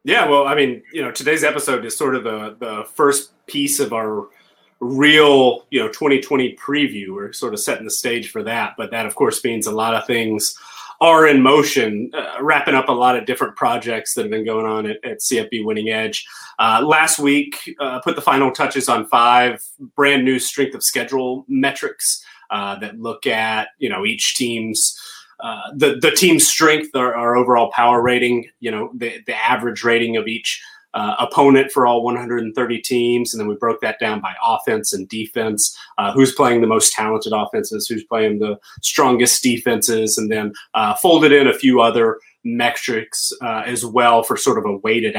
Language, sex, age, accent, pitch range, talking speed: English, male, 30-49, American, 110-135 Hz, 195 wpm